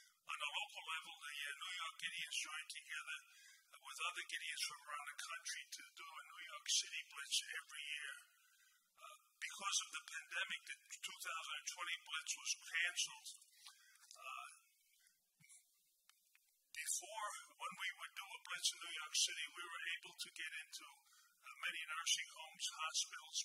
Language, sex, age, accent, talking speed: English, male, 50-69, American, 150 wpm